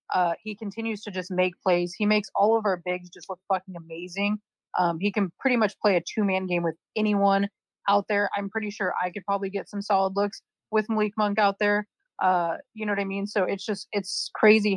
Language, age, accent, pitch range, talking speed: English, 30-49, American, 180-205 Hz, 230 wpm